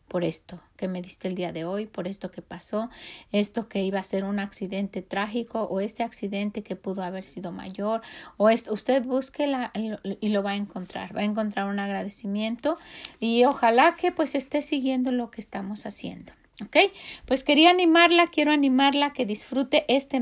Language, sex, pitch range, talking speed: Spanish, female, 195-245 Hz, 185 wpm